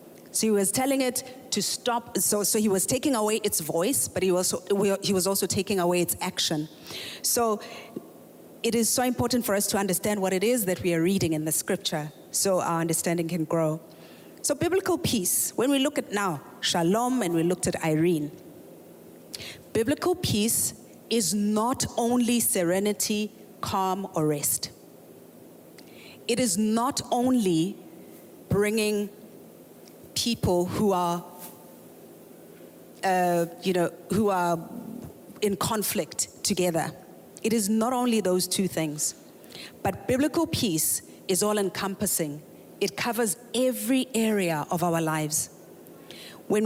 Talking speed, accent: 140 wpm, South African